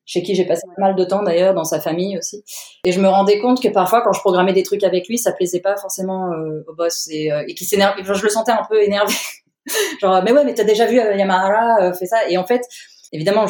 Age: 20-39